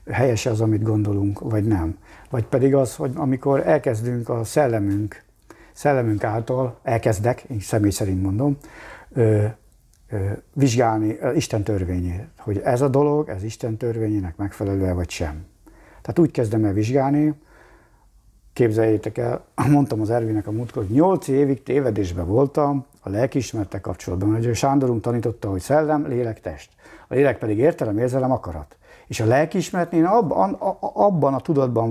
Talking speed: 140 wpm